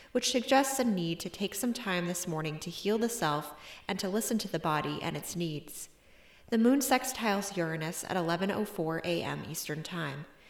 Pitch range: 160-210 Hz